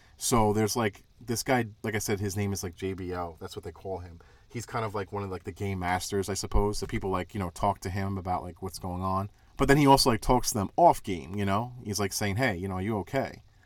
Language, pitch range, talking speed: English, 95-115 Hz, 280 wpm